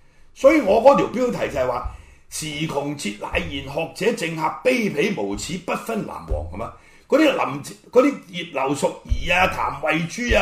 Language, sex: Chinese, male